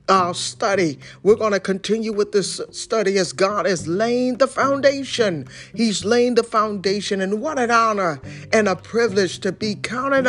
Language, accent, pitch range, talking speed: English, American, 190-235 Hz, 170 wpm